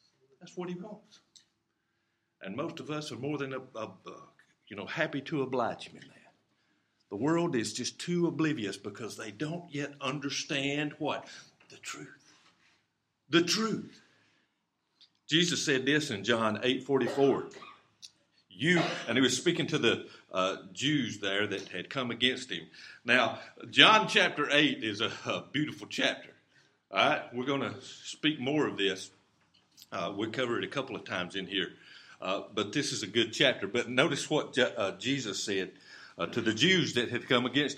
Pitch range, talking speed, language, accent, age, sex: 125-200 Hz, 175 wpm, English, American, 50-69, male